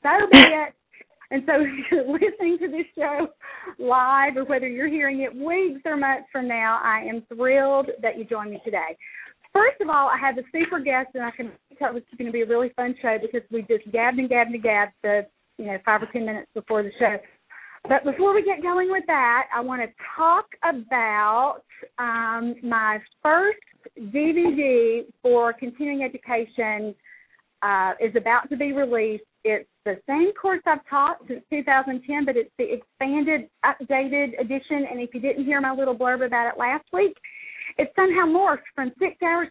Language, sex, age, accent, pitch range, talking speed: English, female, 40-59, American, 230-295 Hz, 190 wpm